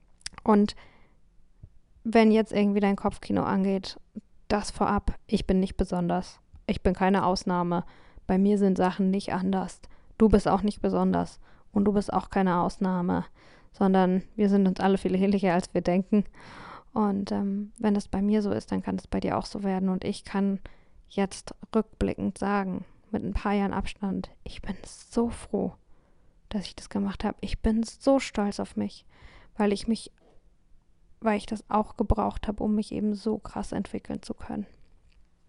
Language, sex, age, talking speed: German, female, 10-29, 175 wpm